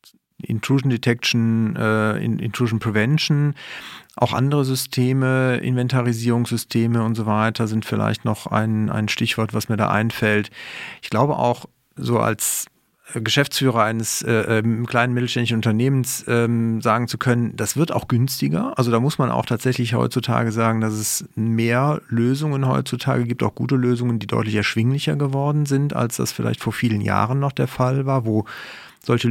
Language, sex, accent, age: German, male, German, 40-59